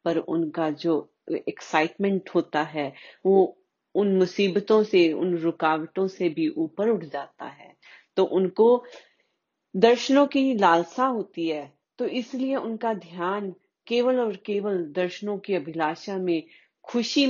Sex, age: female, 40-59